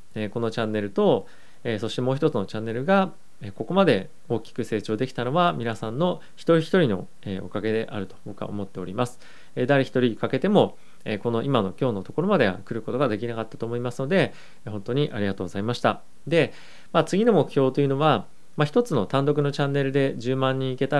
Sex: male